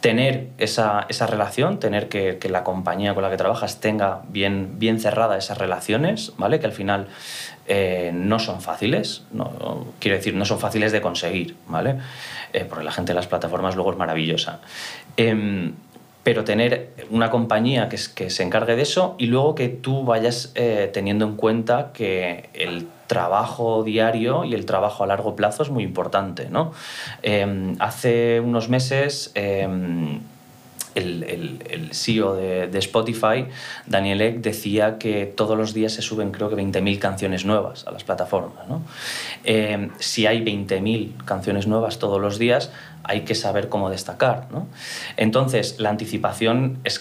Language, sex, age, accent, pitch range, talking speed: Spanish, male, 30-49, Spanish, 95-115 Hz, 160 wpm